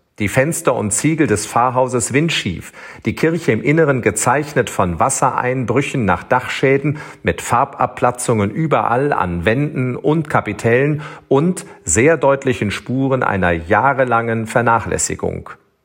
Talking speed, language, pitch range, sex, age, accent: 115 wpm, German, 110-140 Hz, male, 40-59, German